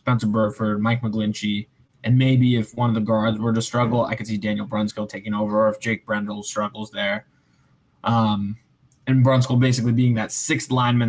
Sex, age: male, 20-39